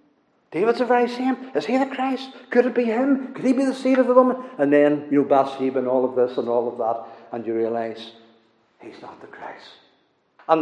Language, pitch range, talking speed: English, 175-255 Hz, 230 wpm